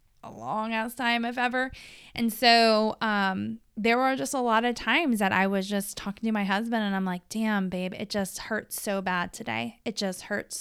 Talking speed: 215 wpm